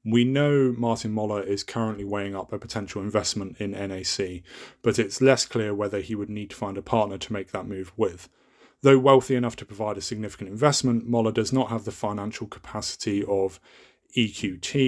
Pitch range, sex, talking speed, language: 100-120 Hz, male, 190 wpm, English